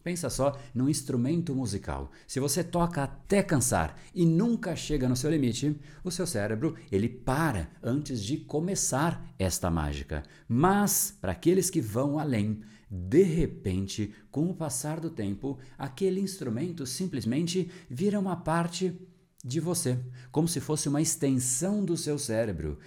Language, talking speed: Portuguese, 145 wpm